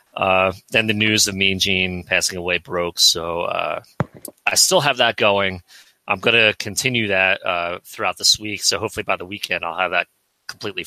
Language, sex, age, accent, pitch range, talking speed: English, male, 30-49, American, 95-110 Hz, 195 wpm